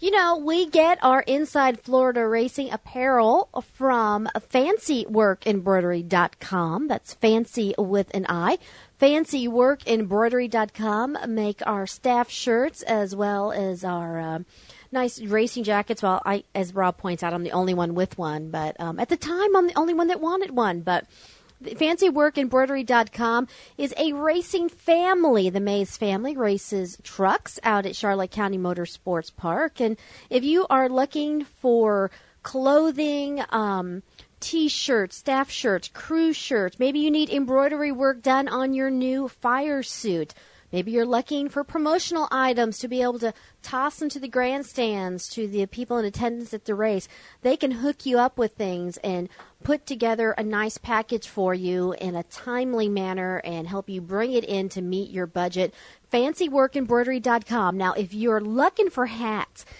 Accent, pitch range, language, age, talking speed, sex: American, 195-265 Hz, English, 40-59, 155 wpm, female